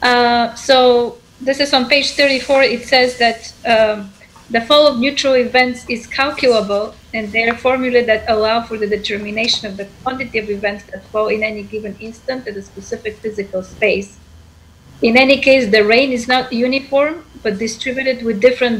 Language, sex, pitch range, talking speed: English, female, 205-240 Hz, 175 wpm